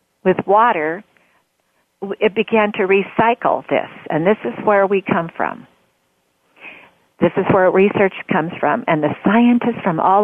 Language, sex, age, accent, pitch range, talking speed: English, female, 50-69, American, 175-220 Hz, 145 wpm